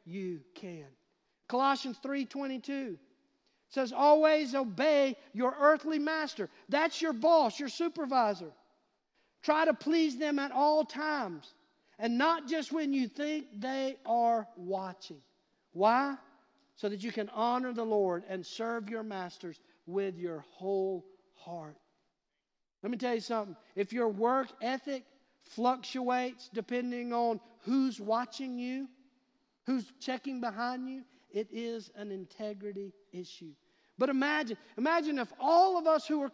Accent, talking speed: American, 130 wpm